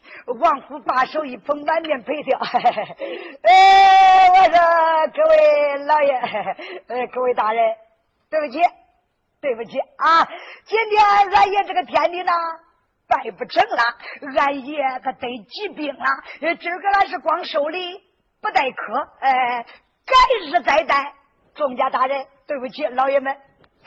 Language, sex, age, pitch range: Chinese, female, 50-69, 255-365 Hz